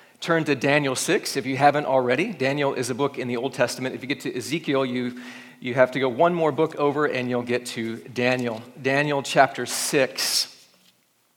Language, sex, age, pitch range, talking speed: English, male, 40-59, 135-170 Hz, 200 wpm